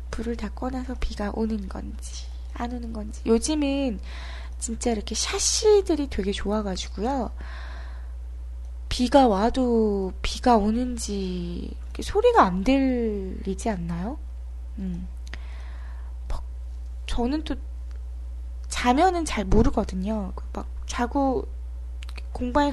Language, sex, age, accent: Korean, female, 20-39, native